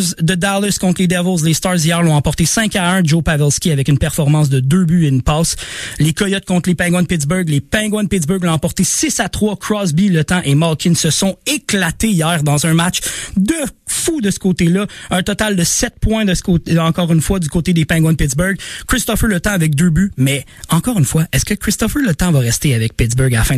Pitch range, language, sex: 150-190 Hz, French, male